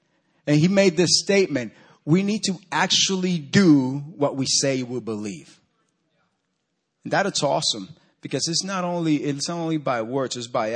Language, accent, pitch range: English, American, 145-185 Hz